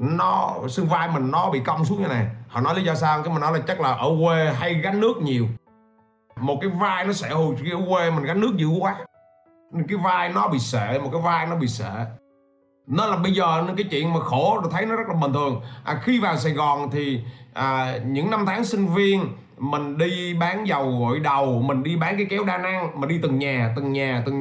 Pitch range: 140-205 Hz